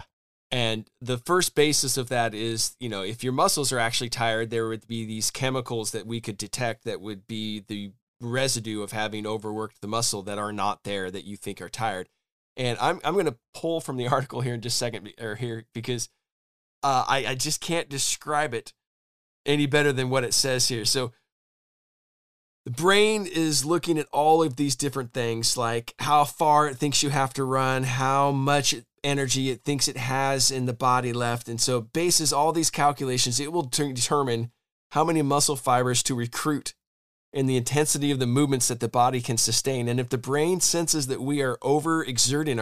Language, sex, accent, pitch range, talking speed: English, male, American, 115-145 Hz, 200 wpm